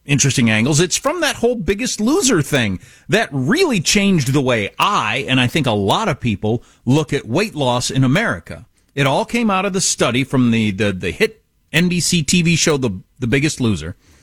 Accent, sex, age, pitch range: American, male, 40-59, 115-195 Hz